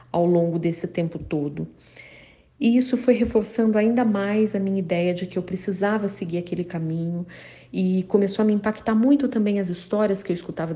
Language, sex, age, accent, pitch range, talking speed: Portuguese, female, 40-59, Brazilian, 180-220 Hz, 185 wpm